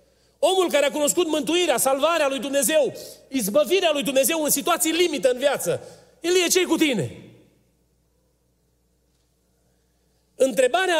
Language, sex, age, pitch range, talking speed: Romanian, male, 40-59, 260-345 Hz, 120 wpm